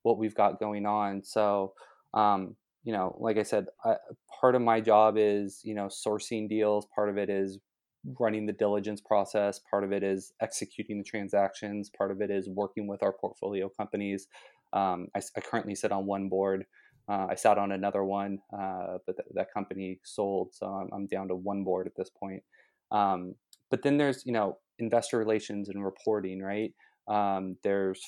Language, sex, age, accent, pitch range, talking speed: English, male, 20-39, American, 95-110 Hz, 185 wpm